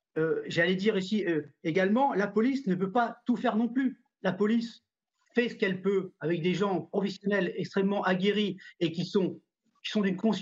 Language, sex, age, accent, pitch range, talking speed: French, male, 40-59, French, 185-235 Hz, 195 wpm